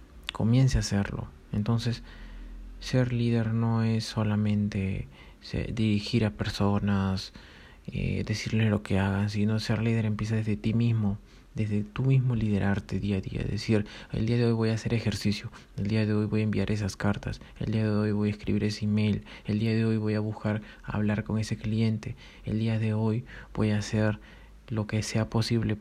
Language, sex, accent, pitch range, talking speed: Spanish, male, Argentinian, 105-110 Hz, 185 wpm